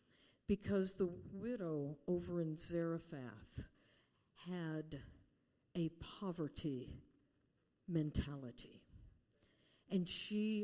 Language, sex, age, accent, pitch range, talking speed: English, female, 60-79, American, 150-195 Hz, 70 wpm